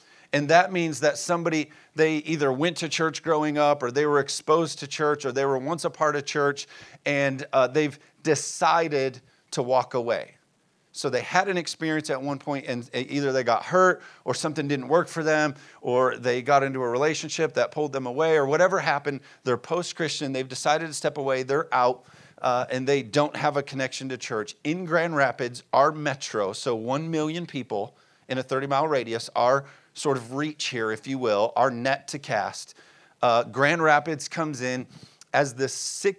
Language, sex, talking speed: English, male, 190 wpm